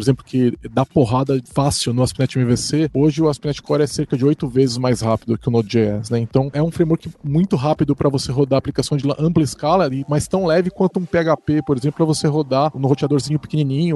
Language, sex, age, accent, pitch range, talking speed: Portuguese, male, 20-39, Brazilian, 130-155 Hz, 220 wpm